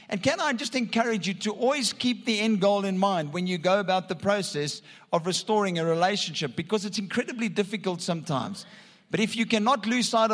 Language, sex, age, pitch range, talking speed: English, male, 50-69, 170-225 Hz, 205 wpm